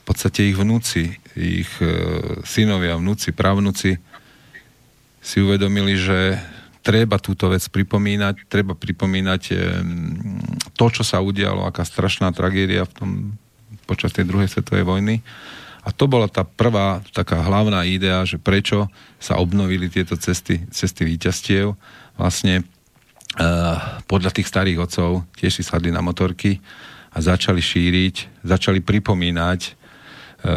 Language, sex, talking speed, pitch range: Slovak, male, 130 wpm, 90-105 Hz